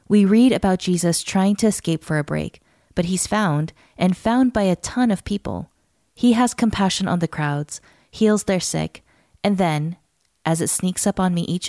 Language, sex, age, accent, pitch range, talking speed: English, female, 20-39, American, 160-205 Hz, 195 wpm